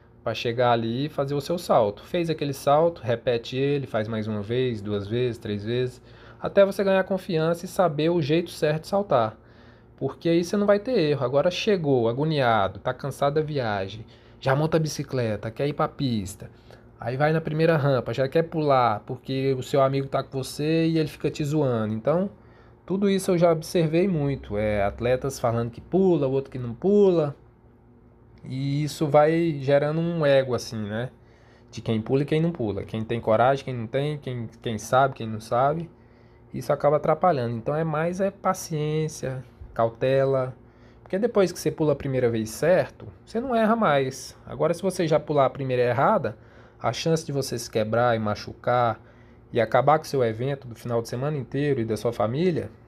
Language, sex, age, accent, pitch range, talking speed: Portuguese, male, 20-39, Brazilian, 115-155 Hz, 195 wpm